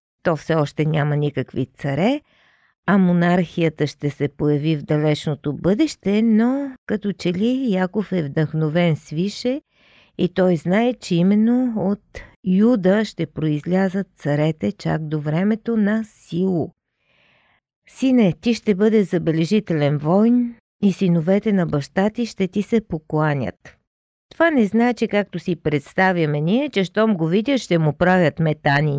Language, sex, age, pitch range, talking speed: Bulgarian, female, 50-69, 155-205 Hz, 140 wpm